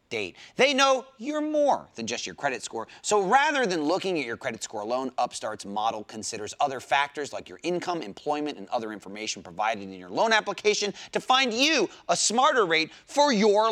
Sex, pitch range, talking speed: male, 150-230 Hz, 195 wpm